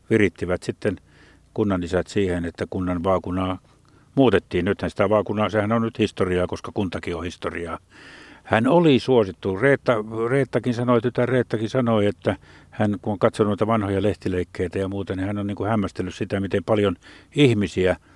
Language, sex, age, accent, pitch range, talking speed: Finnish, male, 60-79, native, 95-115 Hz, 150 wpm